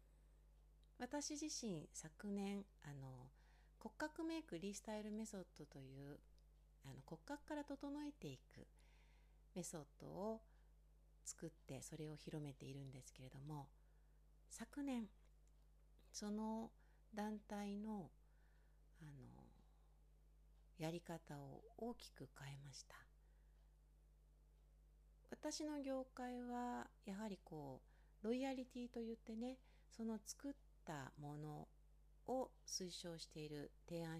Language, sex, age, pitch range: Japanese, female, 60-79, 135-225 Hz